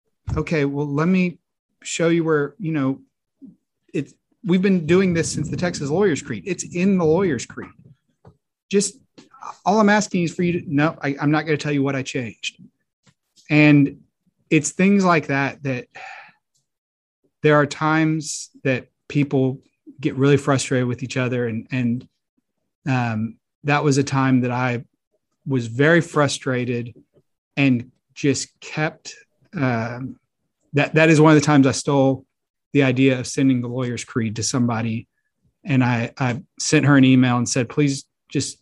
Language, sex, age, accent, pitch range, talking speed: English, male, 30-49, American, 125-155 Hz, 165 wpm